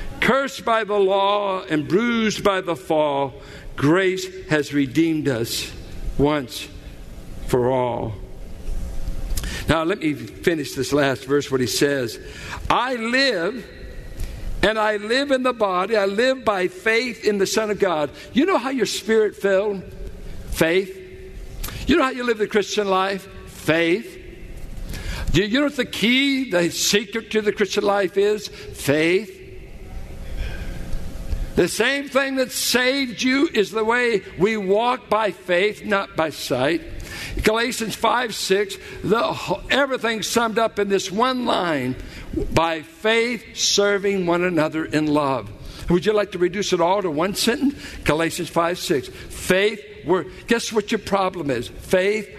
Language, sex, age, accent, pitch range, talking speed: English, male, 60-79, American, 155-225 Hz, 145 wpm